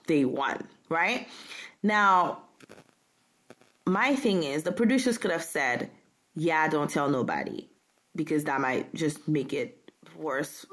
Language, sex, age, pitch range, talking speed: English, female, 20-39, 150-205 Hz, 130 wpm